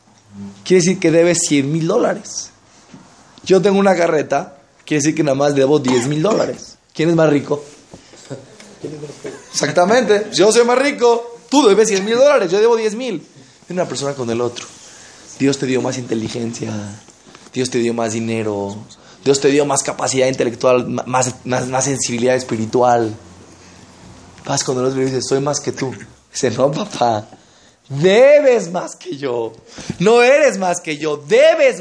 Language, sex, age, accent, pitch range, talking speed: Spanish, male, 20-39, Mexican, 125-180 Hz, 165 wpm